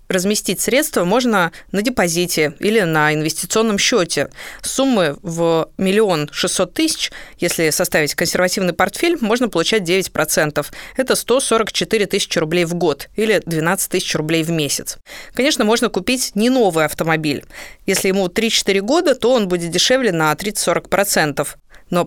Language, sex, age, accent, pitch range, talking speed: Russian, female, 20-39, native, 165-225 Hz, 135 wpm